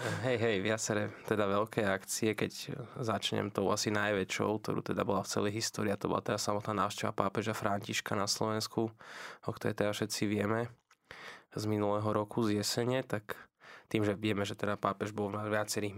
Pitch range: 105-110 Hz